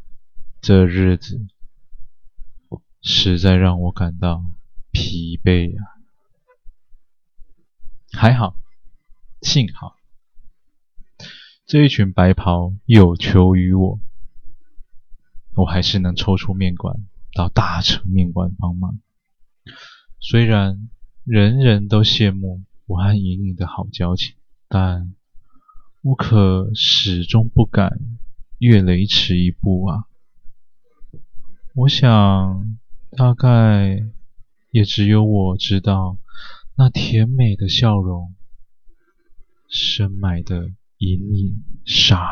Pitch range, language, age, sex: 95-115 Hz, Chinese, 20-39, male